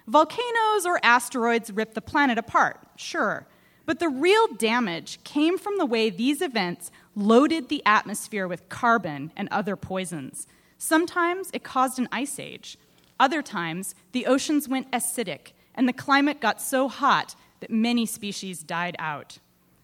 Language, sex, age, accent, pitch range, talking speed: English, female, 30-49, American, 200-270 Hz, 150 wpm